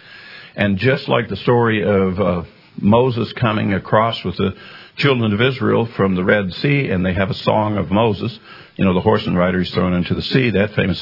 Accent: American